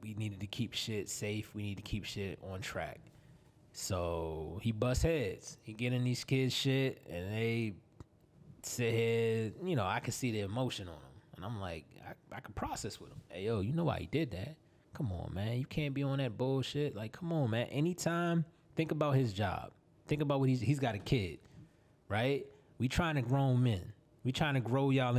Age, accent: 20-39, American